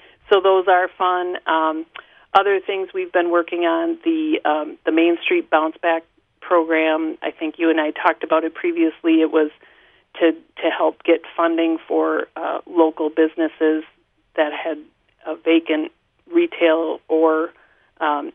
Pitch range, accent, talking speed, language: 160-175 Hz, American, 150 wpm, English